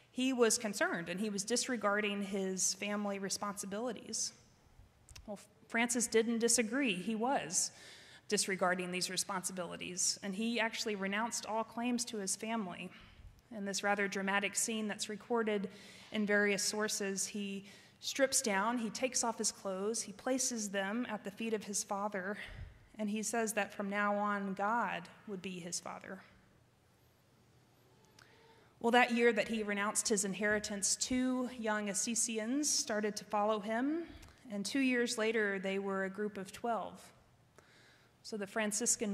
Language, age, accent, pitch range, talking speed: English, 30-49, American, 200-230 Hz, 145 wpm